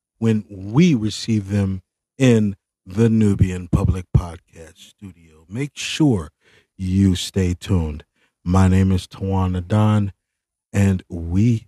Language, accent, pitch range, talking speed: English, American, 95-120 Hz, 115 wpm